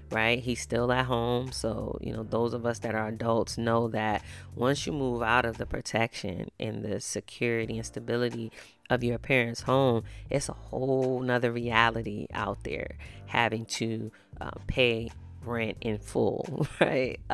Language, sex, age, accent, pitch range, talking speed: English, female, 30-49, American, 105-120 Hz, 165 wpm